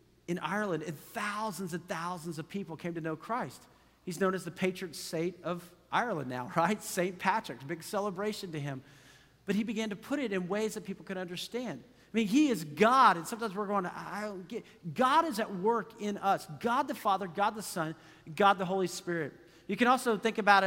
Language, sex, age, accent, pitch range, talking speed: English, male, 40-59, American, 180-245 Hz, 215 wpm